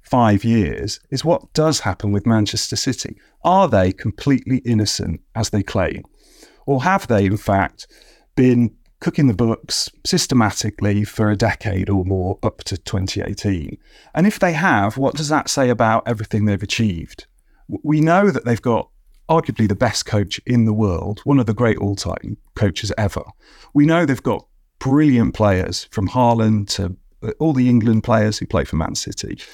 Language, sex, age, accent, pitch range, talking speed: English, male, 40-59, British, 100-135 Hz, 170 wpm